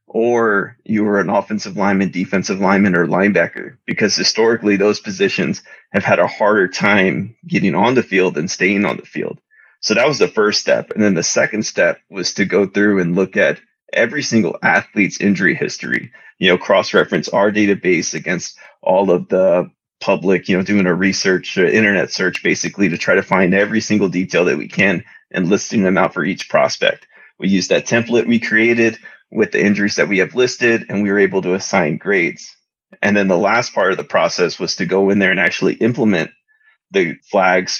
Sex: male